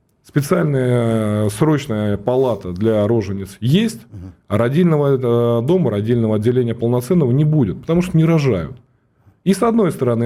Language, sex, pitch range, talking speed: Russian, male, 95-135 Hz, 130 wpm